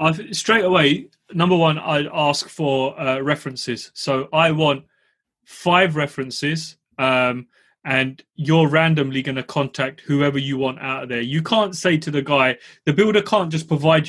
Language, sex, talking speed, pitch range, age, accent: English, male, 165 wpm, 135-175 Hz, 30-49, British